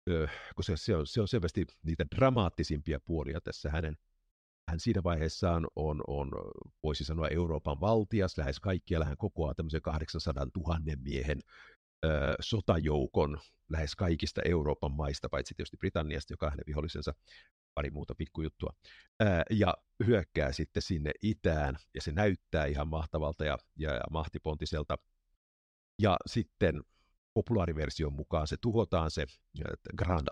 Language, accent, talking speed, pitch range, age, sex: Finnish, native, 130 wpm, 75-90 Hz, 50-69, male